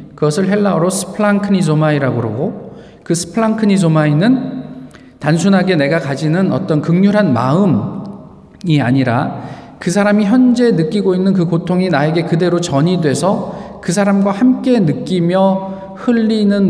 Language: Korean